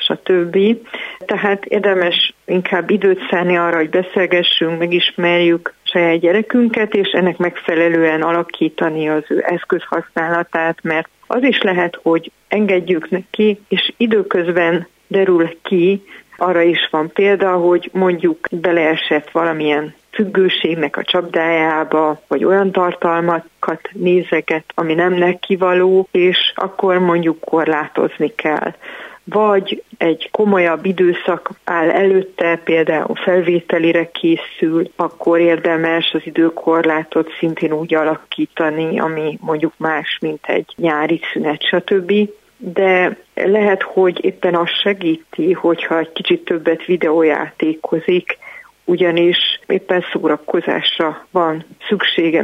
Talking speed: 105 wpm